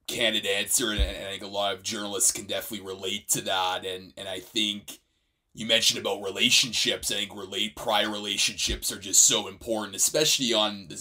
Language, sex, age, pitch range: English, male, 30-49, 105-130 Hz